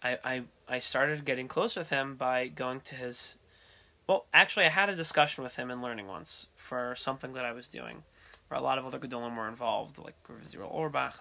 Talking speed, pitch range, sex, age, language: 215 wpm, 120-145 Hz, male, 20-39, English